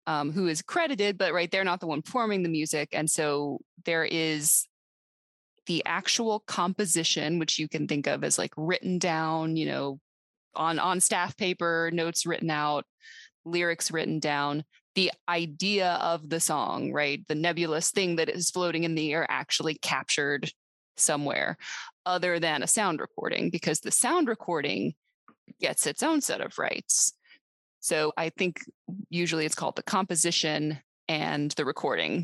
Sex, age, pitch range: female, 20-39, 155-180 Hz